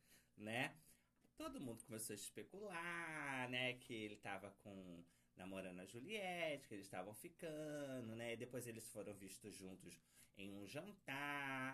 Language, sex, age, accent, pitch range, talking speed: Portuguese, male, 30-49, Brazilian, 105-160 Hz, 145 wpm